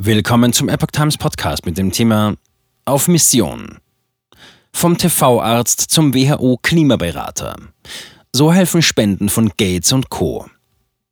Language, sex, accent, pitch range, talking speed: German, male, German, 95-130 Hz, 115 wpm